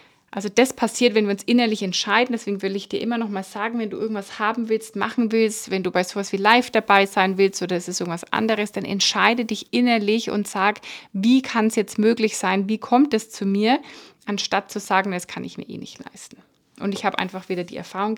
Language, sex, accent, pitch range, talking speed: German, female, German, 195-230 Hz, 235 wpm